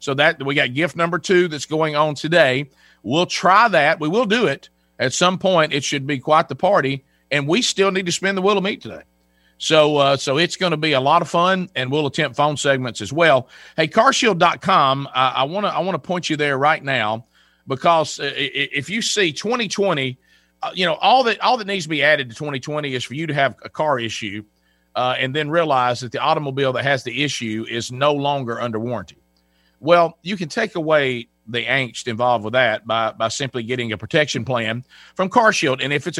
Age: 40-59